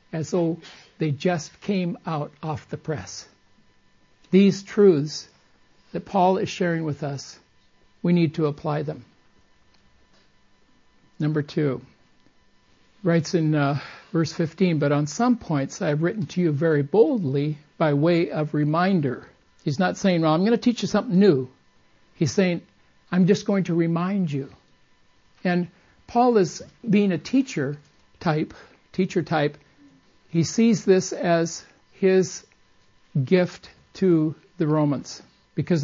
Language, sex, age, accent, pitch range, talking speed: English, male, 60-79, American, 150-190 Hz, 135 wpm